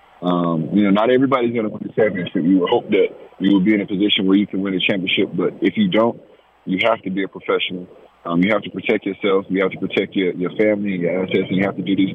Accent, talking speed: American, 285 wpm